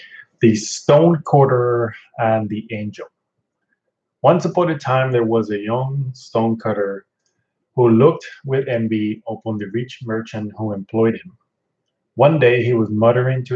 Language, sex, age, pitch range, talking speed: English, male, 30-49, 110-135 Hz, 140 wpm